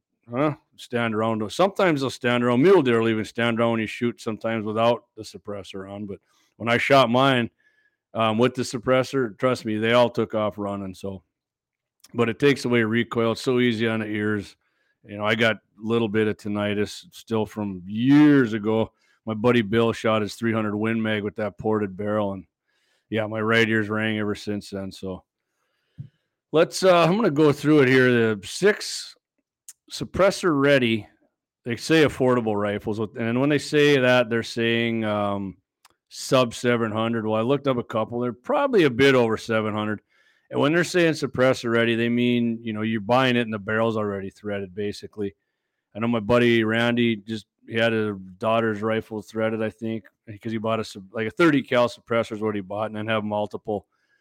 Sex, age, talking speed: male, 40-59, 190 wpm